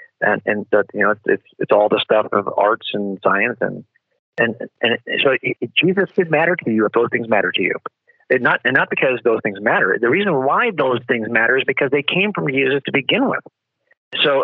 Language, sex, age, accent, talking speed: English, male, 40-59, American, 230 wpm